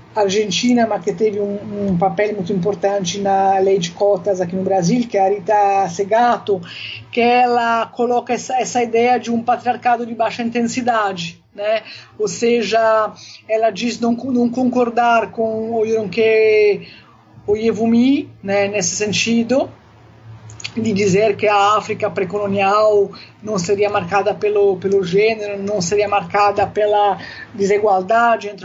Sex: female